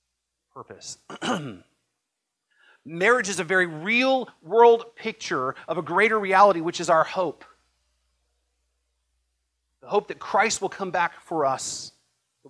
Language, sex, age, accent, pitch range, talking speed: English, male, 40-59, American, 135-185 Hz, 120 wpm